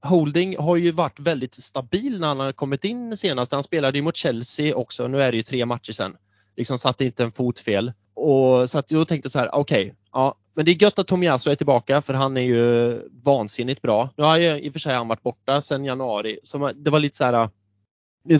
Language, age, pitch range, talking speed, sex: Swedish, 20-39, 120-150 Hz, 240 wpm, male